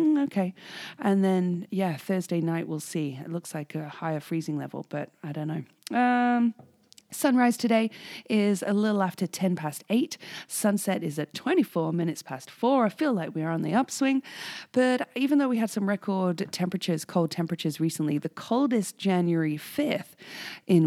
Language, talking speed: English, 175 wpm